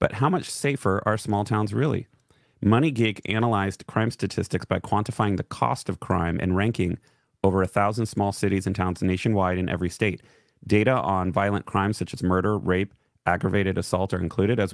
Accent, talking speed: American, 180 wpm